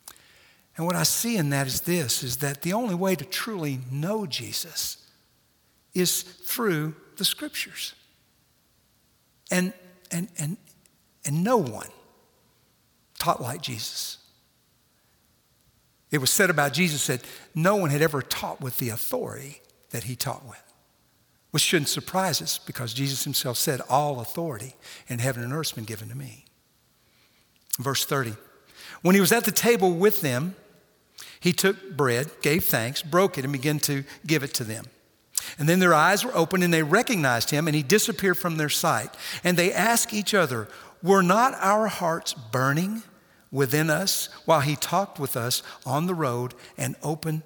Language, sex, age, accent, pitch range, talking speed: English, male, 60-79, American, 135-185 Hz, 165 wpm